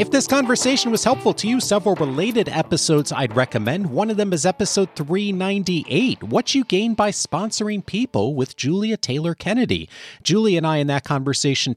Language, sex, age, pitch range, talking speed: English, male, 40-59, 105-170 Hz, 175 wpm